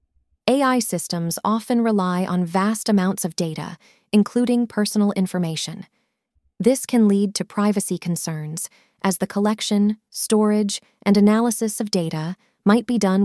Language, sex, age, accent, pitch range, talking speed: English, female, 30-49, American, 180-220 Hz, 130 wpm